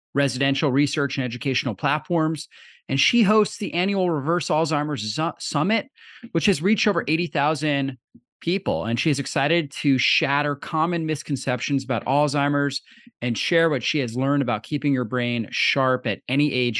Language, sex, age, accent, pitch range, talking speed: English, male, 30-49, American, 135-165 Hz, 155 wpm